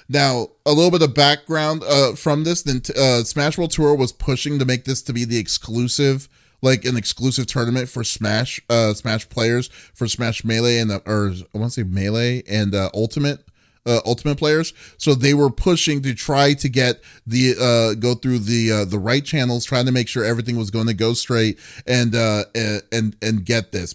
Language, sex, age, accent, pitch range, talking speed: English, male, 30-49, American, 110-145 Hz, 210 wpm